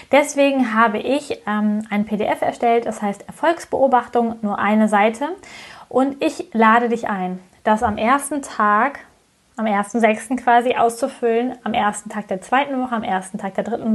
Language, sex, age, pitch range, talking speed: German, female, 20-39, 215-265 Hz, 165 wpm